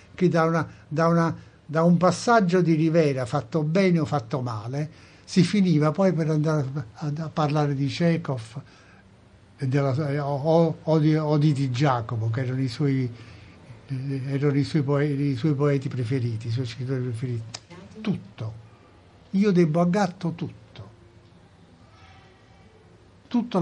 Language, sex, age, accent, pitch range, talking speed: Italian, male, 60-79, native, 125-165 Hz, 140 wpm